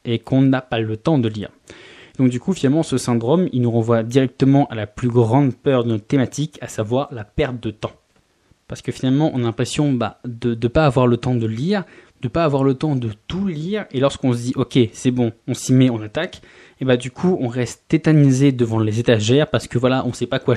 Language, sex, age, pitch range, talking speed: French, male, 20-39, 120-140 Hz, 260 wpm